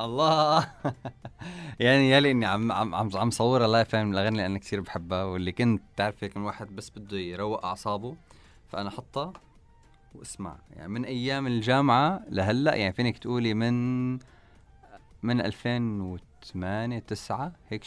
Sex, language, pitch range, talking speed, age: male, Arabic, 100-135 Hz, 145 wpm, 20-39